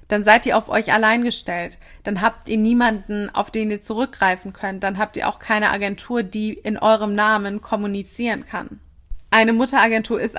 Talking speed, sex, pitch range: 180 wpm, female, 205-230 Hz